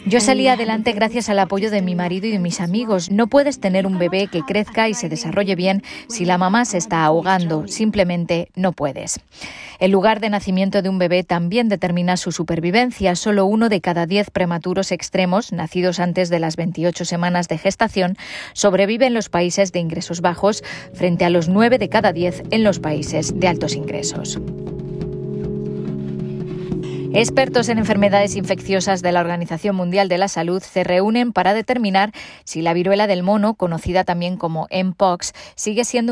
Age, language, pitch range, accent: 20-39, Spanish, 175-210 Hz, Spanish